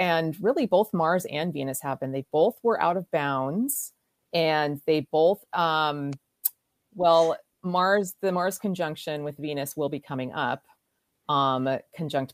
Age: 30-49